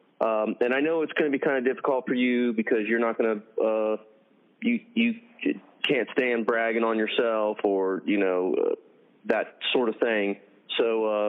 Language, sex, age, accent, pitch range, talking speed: English, male, 30-49, American, 110-155 Hz, 190 wpm